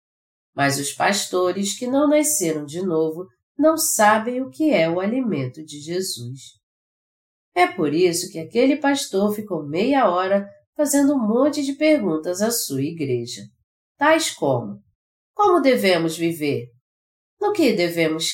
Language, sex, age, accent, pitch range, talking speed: Portuguese, female, 40-59, Brazilian, 145-240 Hz, 135 wpm